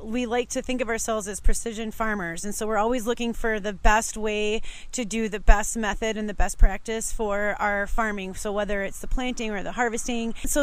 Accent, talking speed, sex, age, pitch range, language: American, 220 wpm, female, 30-49, 215-240 Hz, English